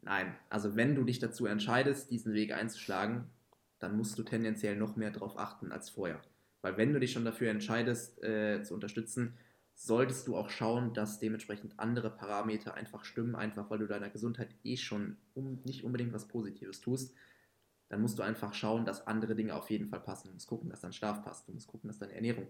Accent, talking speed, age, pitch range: German, 205 wpm, 20-39, 105-120 Hz